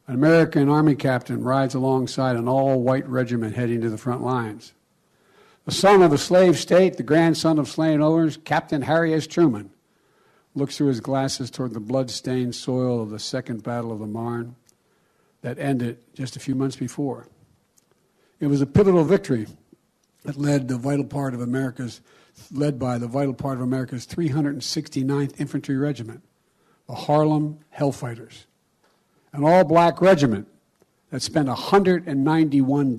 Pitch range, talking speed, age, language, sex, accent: 125-165 Hz, 150 wpm, 60-79, English, male, American